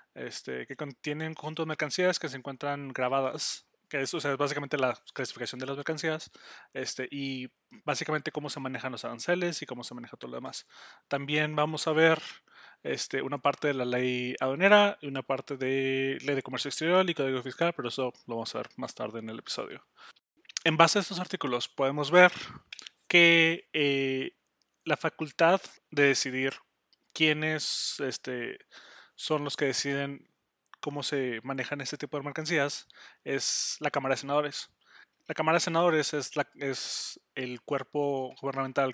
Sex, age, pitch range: male, 30-49, 130-155 Hz